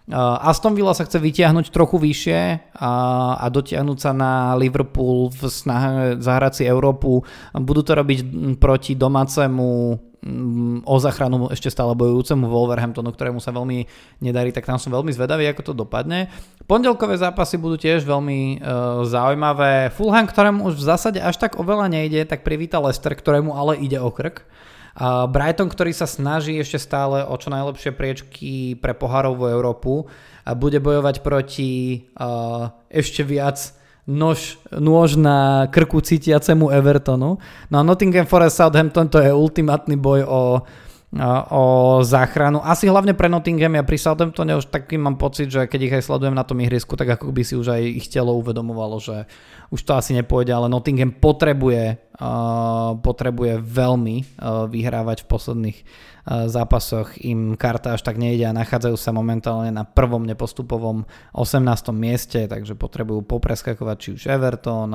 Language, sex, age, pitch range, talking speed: Slovak, male, 20-39, 120-150 Hz, 155 wpm